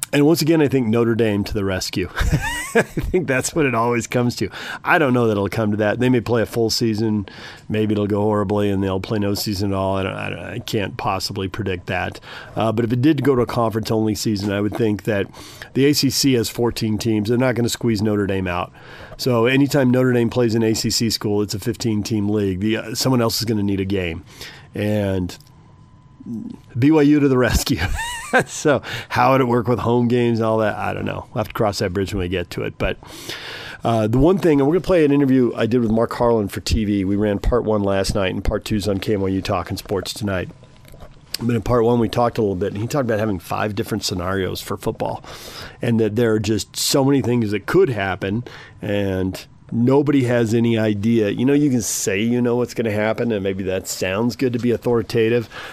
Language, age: English, 40-59